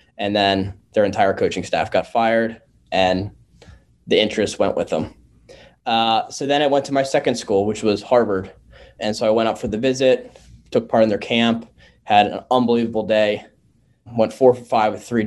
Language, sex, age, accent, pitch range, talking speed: English, male, 10-29, American, 100-115 Hz, 195 wpm